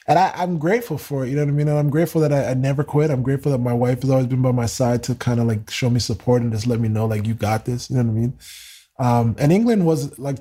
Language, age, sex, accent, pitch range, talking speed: English, 20-39, male, American, 110-135 Hz, 315 wpm